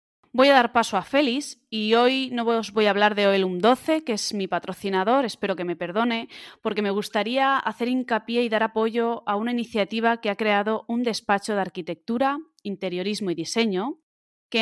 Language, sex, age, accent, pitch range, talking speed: Spanish, female, 20-39, Spanish, 190-245 Hz, 185 wpm